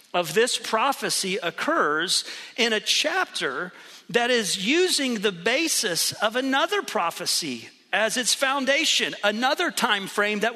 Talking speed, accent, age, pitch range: 125 wpm, American, 40-59, 205-265 Hz